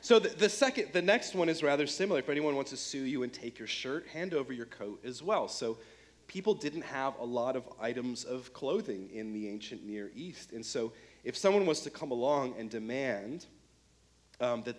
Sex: male